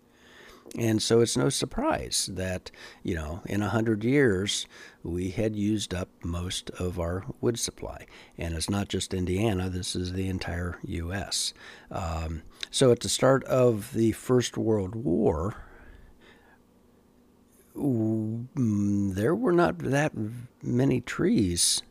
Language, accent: English, American